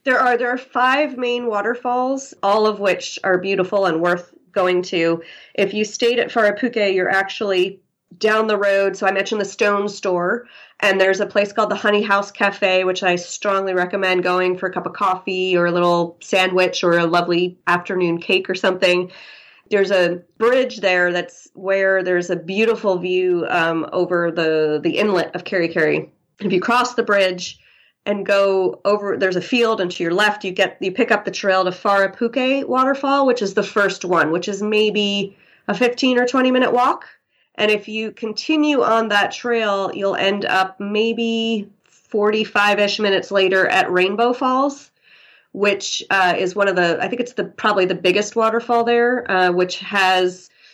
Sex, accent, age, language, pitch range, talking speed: female, American, 30-49, English, 185-220 Hz, 185 wpm